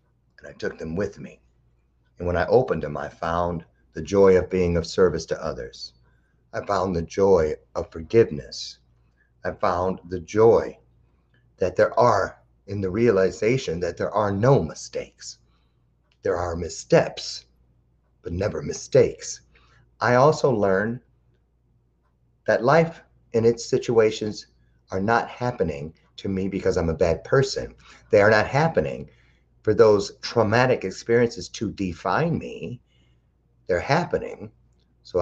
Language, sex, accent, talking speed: English, male, American, 135 wpm